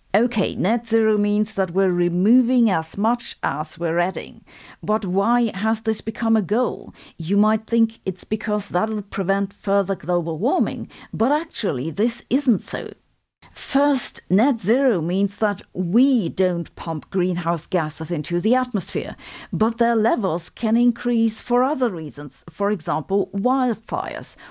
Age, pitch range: 50-69, 185-240 Hz